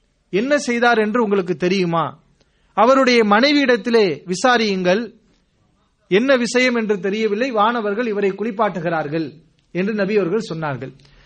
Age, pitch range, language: 30-49, 185-230 Hz, English